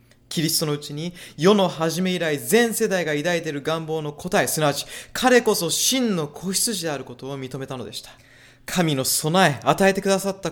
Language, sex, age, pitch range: Japanese, male, 20-39, 135-200 Hz